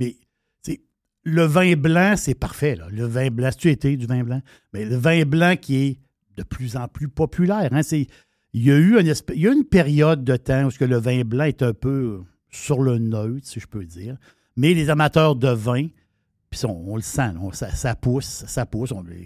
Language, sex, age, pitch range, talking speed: French, male, 60-79, 125-165 Hz, 220 wpm